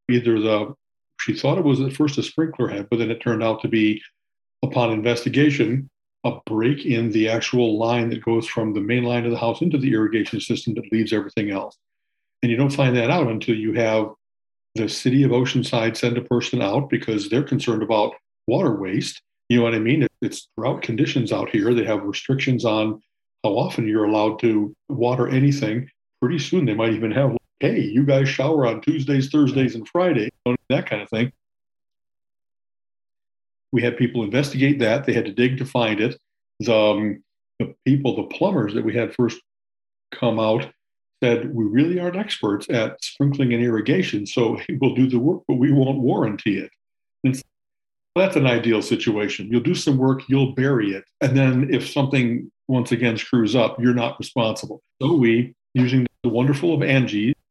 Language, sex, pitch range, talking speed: English, male, 115-135 Hz, 185 wpm